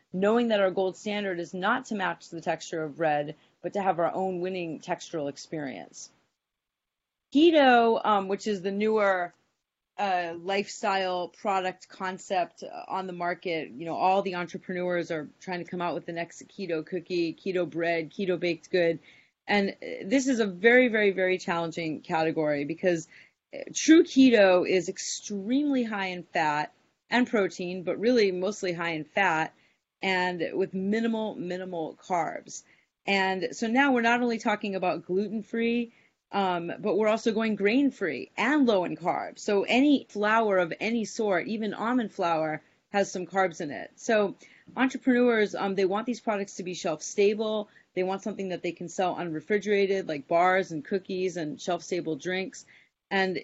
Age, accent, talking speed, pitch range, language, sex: 30-49, American, 160 wpm, 175-215 Hz, English, female